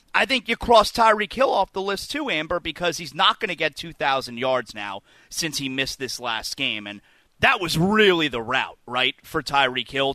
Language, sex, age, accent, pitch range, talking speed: English, male, 30-49, American, 160-255 Hz, 215 wpm